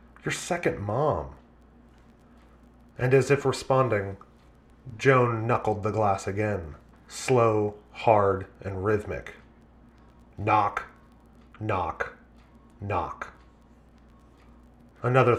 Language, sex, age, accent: English, male, 30-49, American